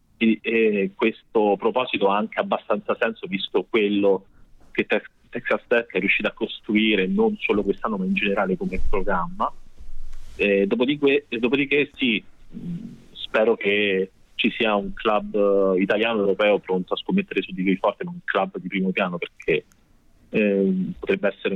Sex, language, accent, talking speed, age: male, Italian, native, 150 wpm, 30-49